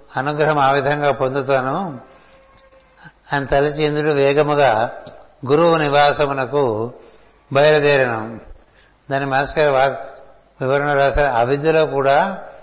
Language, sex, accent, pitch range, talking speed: Telugu, male, native, 135-160 Hz, 80 wpm